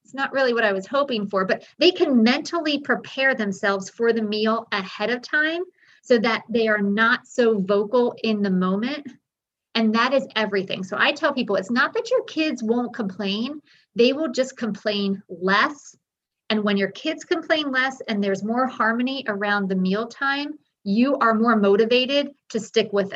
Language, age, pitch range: English, 40-59, 200-260 Hz